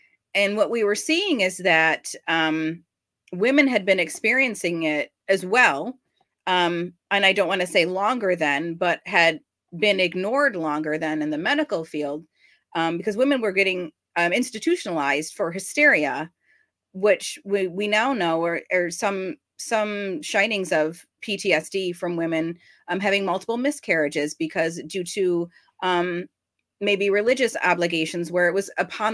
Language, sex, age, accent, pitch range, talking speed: English, female, 30-49, American, 165-205 Hz, 145 wpm